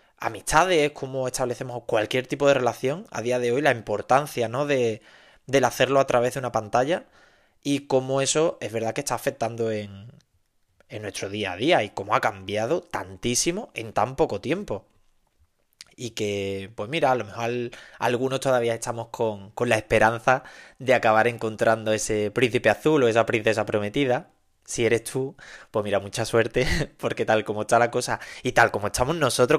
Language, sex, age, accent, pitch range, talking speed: Spanish, male, 20-39, Spanish, 110-130 Hz, 175 wpm